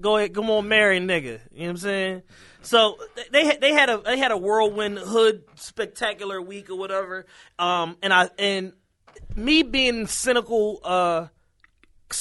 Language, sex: English, male